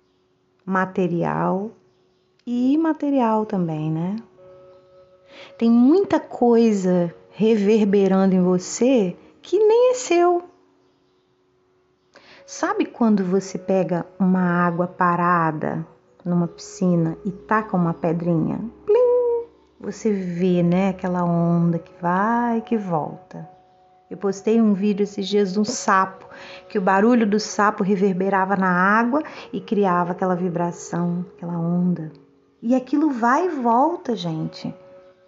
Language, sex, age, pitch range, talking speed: Portuguese, female, 30-49, 180-230 Hz, 115 wpm